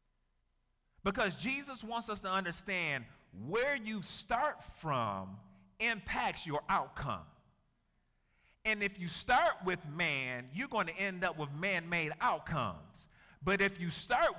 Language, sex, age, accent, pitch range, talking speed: English, male, 50-69, American, 115-190 Hz, 130 wpm